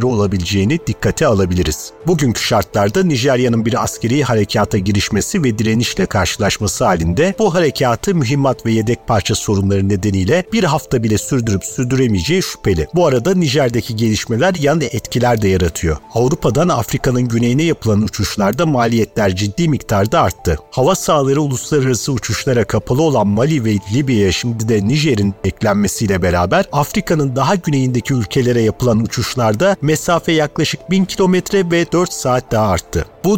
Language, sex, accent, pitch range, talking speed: Turkish, male, native, 105-145 Hz, 135 wpm